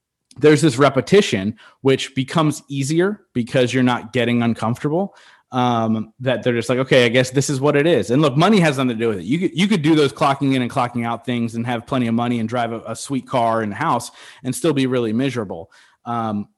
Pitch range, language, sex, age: 115-140 Hz, English, male, 30-49